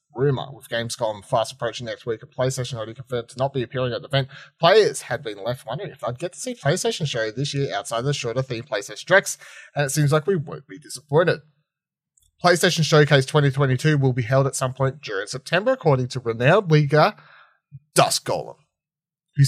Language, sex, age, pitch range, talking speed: English, male, 30-49, 125-155 Hz, 195 wpm